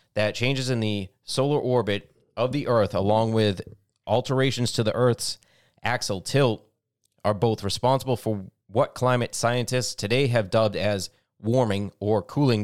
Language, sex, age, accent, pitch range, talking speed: English, male, 30-49, American, 105-130 Hz, 145 wpm